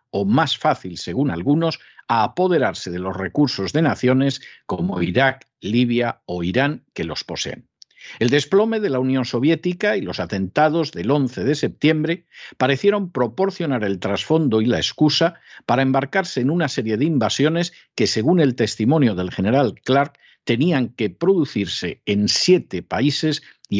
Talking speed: 155 wpm